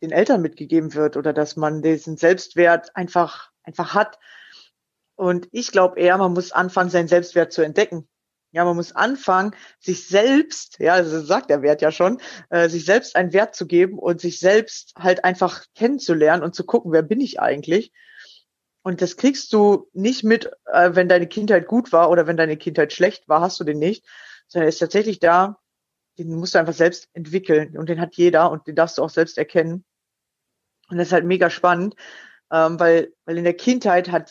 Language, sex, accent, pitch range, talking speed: German, female, German, 170-190 Hz, 195 wpm